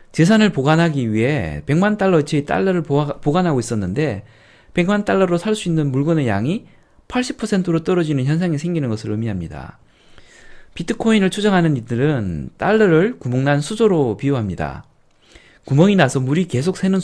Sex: male